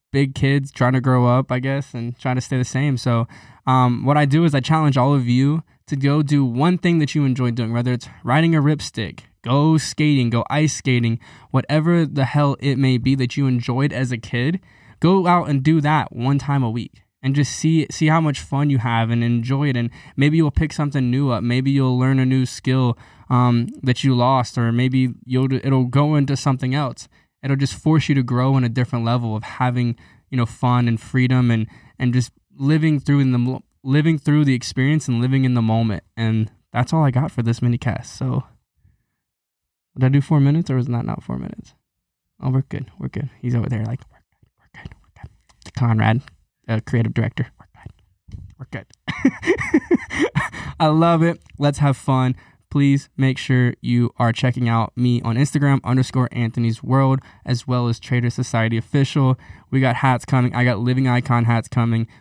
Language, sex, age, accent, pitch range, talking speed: English, male, 10-29, American, 120-140 Hz, 205 wpm